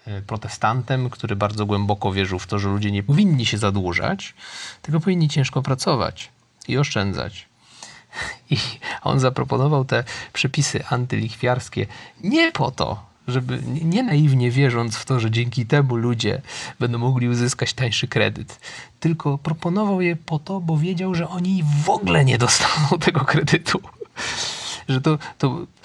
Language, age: Polish, 30-49